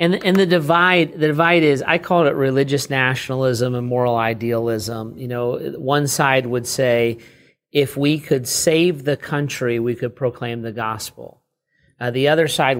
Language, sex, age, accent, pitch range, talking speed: English, male, 40-59, American, 125-145 Hz, 170 wpm